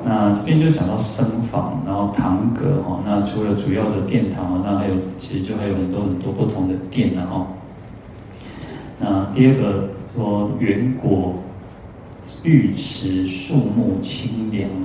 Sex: male